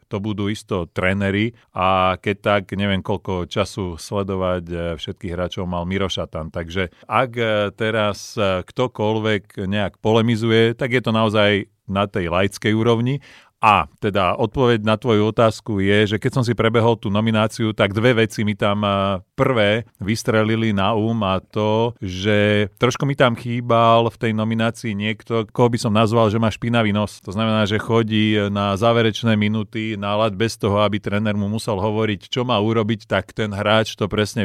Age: 40-59